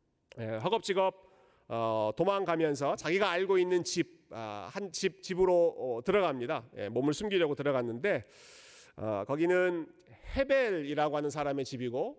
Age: 40-59